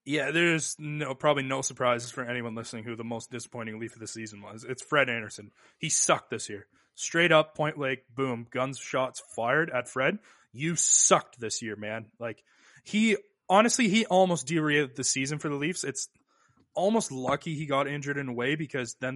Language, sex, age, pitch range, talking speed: English, male, 20-39, 125-150 Hz, 190 wpm